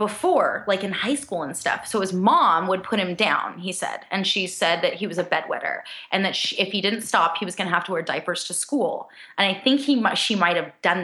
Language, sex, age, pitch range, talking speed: English, female, 20-39, 185-230 Hz, 265 wpm